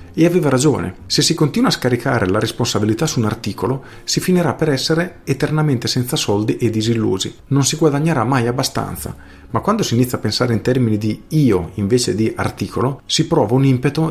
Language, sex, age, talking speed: Italian, male, 40-59, 185 wpm